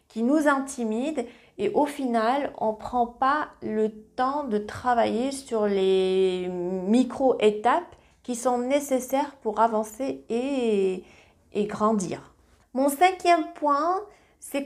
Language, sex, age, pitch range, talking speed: French, female, 30-49, 195-270 Hz, 115 wpm